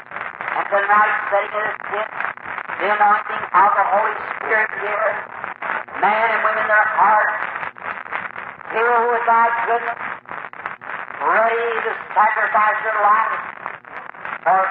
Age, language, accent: 50-69, English, American